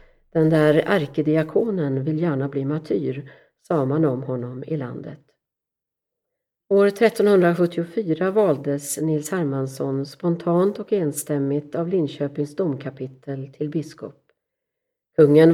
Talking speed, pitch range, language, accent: 105 wpm, 140-180 Hz, Swedish, native